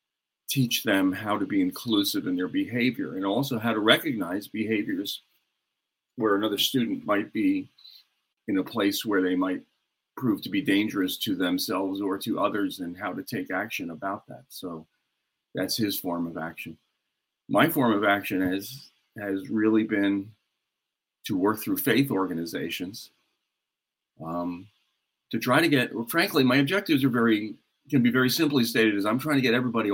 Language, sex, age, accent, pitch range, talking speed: English, male, 40-59, American, 85-135 Hz, 165 wpm